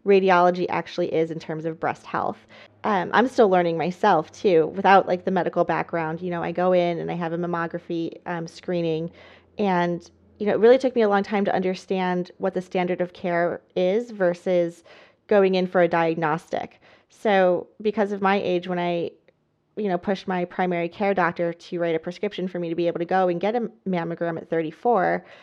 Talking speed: 205 wpm